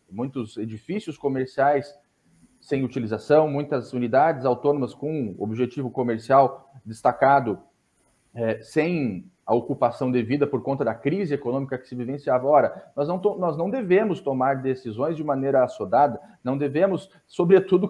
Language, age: Portuguese, 40-59